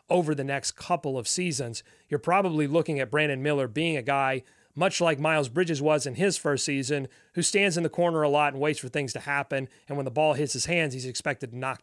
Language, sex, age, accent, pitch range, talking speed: English, male, 30-49, American, 135-165 Hz, 245 wpm